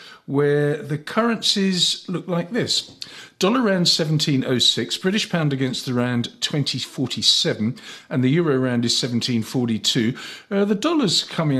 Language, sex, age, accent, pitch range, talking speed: English, male, 50-69, British, 115-160 Hz, 130 wpm